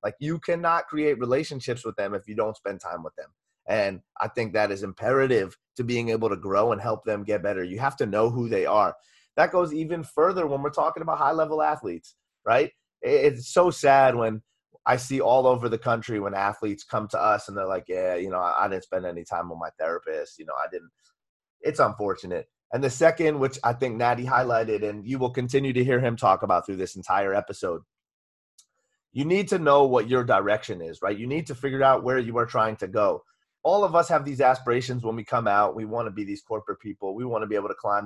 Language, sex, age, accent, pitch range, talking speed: English, male, 30-49, American, 110-150 Hz, 235 wpm